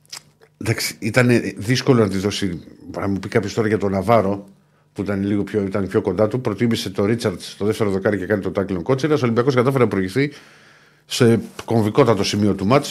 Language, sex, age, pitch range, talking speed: Greek, male, 50-69, 105-145 Hz, 200 wpm